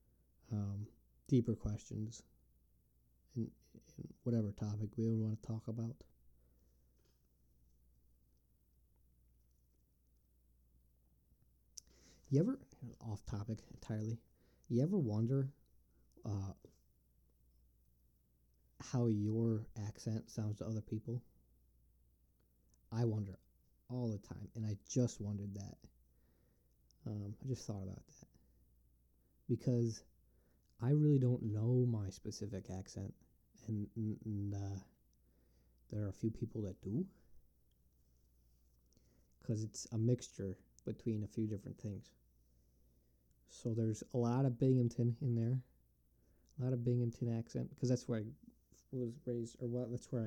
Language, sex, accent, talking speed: English, male, American, 110 wpm